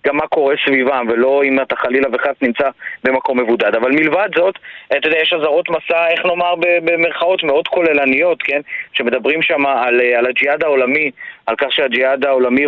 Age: 30-49